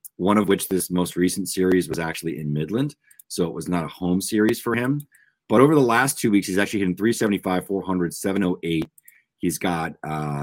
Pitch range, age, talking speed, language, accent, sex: 80-100 Hz, 30-49, 200 wpm, English, American, male